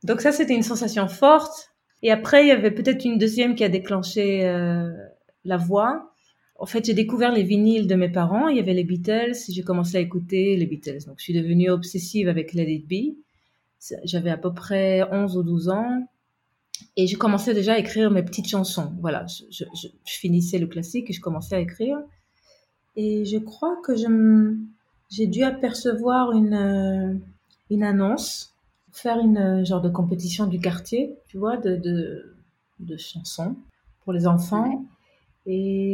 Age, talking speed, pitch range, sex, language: 30-49, 180 wpm, 180-225 Hz, female, French